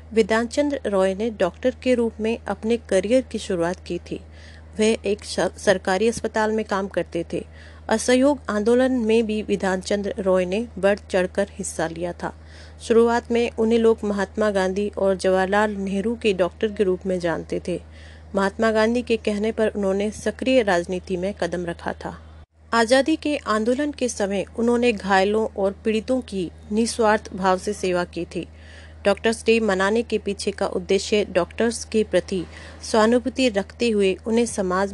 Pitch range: 185-220 Hz